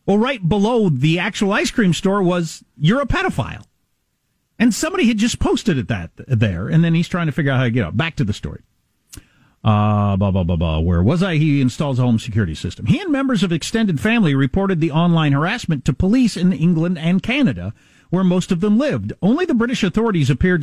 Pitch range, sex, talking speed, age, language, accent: 140-220 Hz, male, 205 wpm, 40-59, English, American